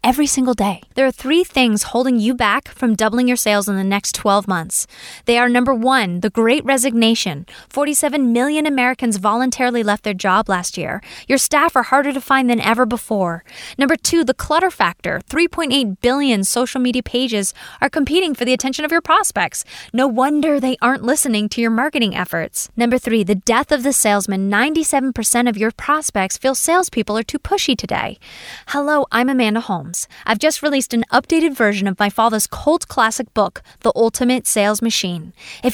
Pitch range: 205-270 Hz